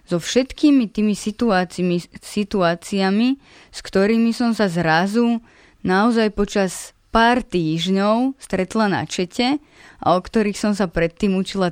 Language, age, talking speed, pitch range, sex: Slovak, 20-39, 120 wpm, 160-200 Hz, female